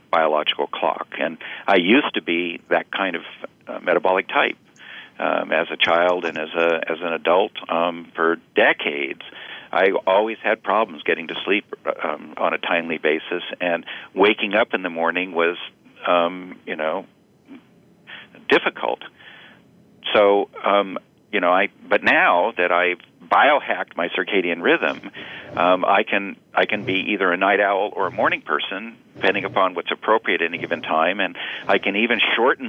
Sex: male